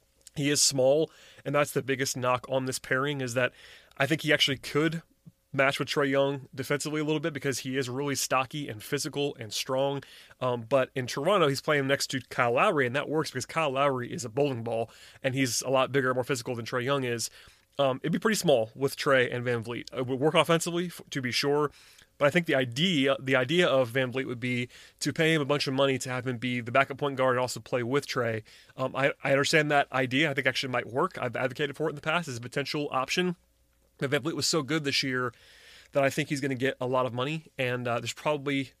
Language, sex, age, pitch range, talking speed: English, male, 30-49, 125-145 Hz, 250 wpm